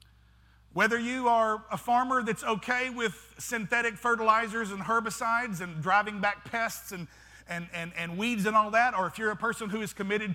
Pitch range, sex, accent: 180-230 Hz, male, American